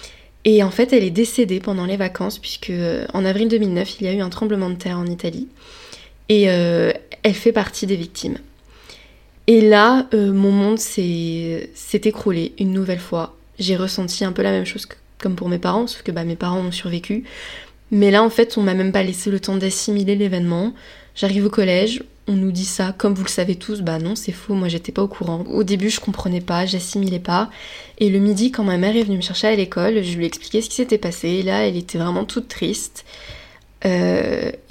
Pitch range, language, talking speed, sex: 180-210 Hz, French, 225 wpm, female